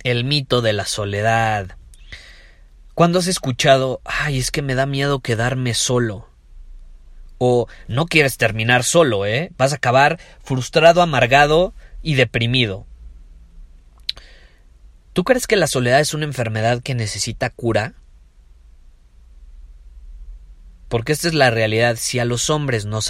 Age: 30-49